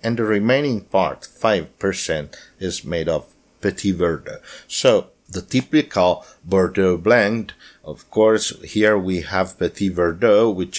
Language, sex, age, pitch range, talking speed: English, male, 50-69, 85-110 Hz, 130 wpm